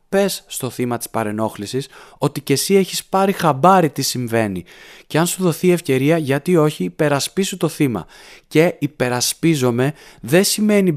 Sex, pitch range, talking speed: male, 115-155 Hz, 155 wpm